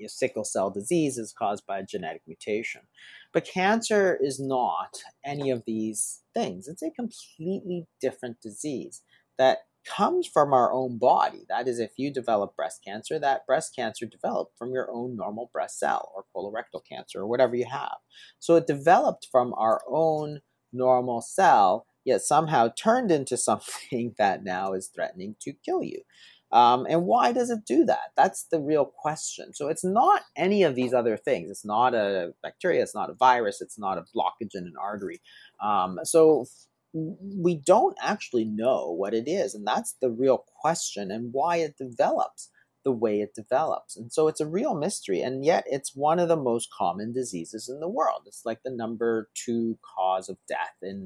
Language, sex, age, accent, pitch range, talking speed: English, male, 40-59, American, 120-180 Hz, 180 wpm